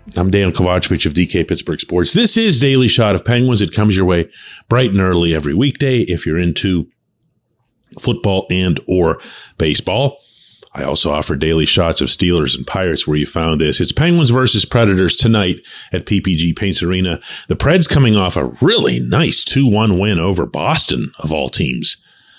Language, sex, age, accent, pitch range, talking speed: English, male, 40-59, American, 85-135 Hz, 175 wpm